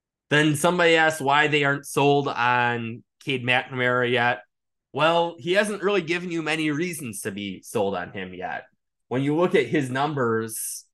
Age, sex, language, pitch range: 20-39, male, English, 115-145 Hz